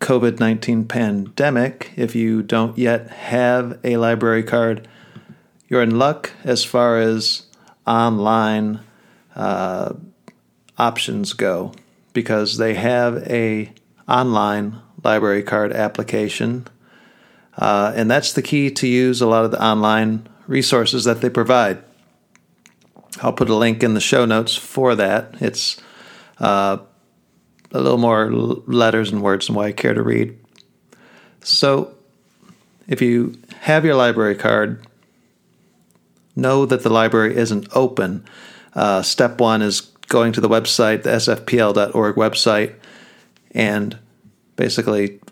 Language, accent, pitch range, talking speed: English, American, 110-125 Hz, 125 wpm